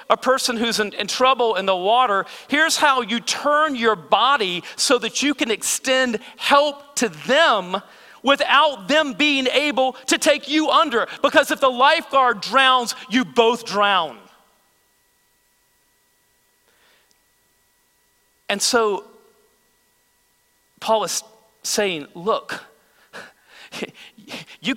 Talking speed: 110 wpm